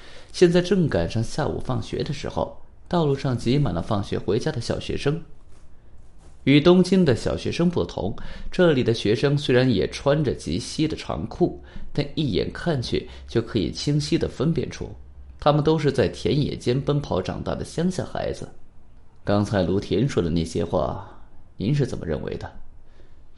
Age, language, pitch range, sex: 30-49, Chinese, 95-135 Hz, male